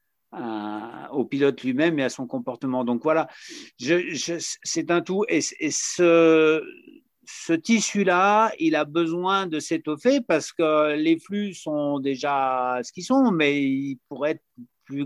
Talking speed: 155 wpm